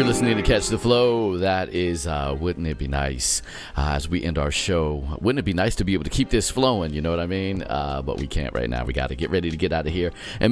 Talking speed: 295 wpm